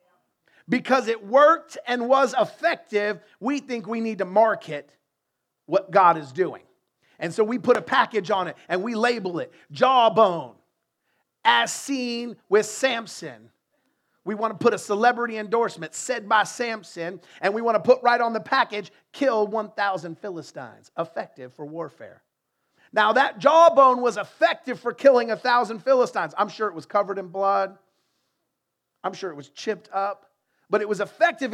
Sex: male